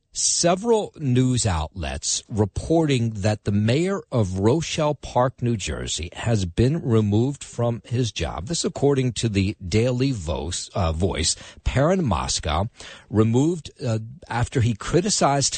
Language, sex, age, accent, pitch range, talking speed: English, male, 50-69, American, 95-125 Hz, 125 wpm